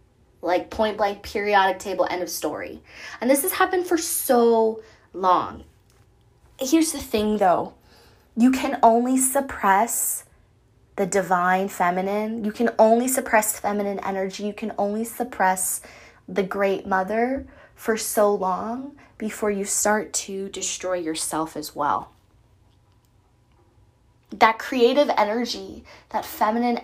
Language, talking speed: English, 125 wpm